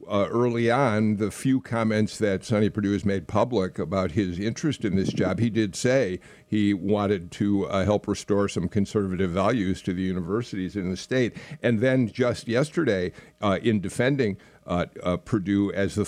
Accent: American